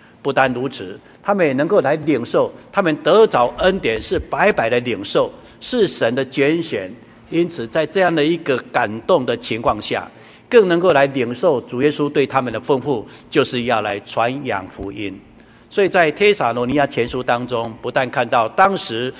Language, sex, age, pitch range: Chinese, male, 60-79, 120-185 Hz